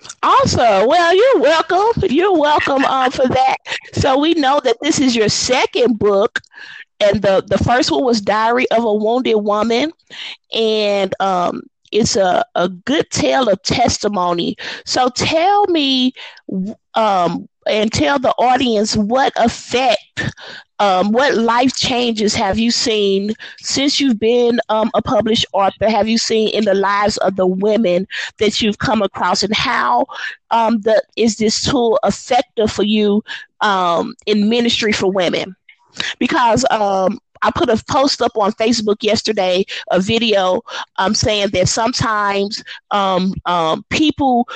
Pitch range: 200-255 Hz